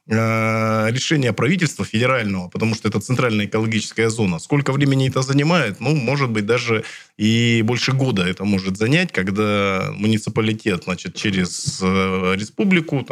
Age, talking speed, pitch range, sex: 20-39, 125 wpm, 100-130 Hz, male